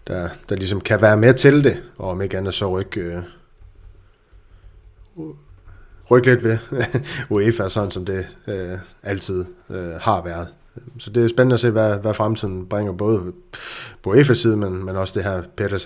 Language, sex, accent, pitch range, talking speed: Danish, male, native, 95-115 Hz, 180 wpm